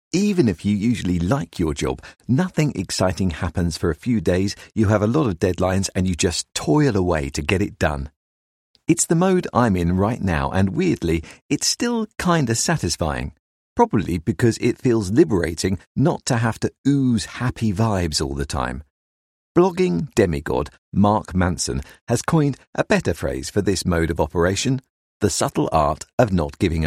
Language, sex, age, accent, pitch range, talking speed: English, male, 50-69, British, 80-125 Hz, 175 wpm